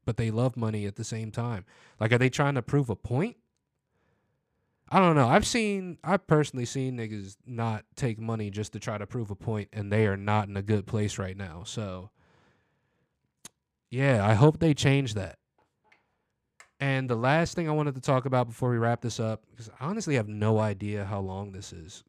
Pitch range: 105-130 Hz